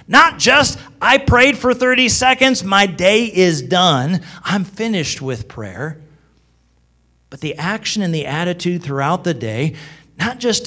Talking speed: 145 wpm